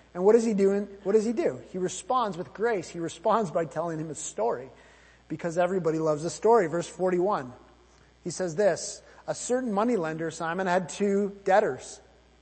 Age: 30-49